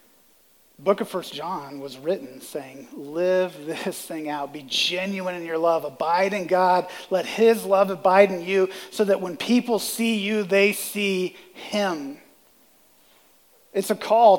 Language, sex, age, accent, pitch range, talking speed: English, male, 40-59, American, 160-205 Hz, 160 wpm